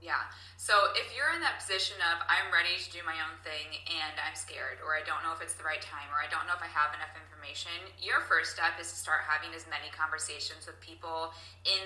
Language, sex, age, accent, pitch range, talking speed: English, female, 10-29, American, 155-195 Hz, 250 wpm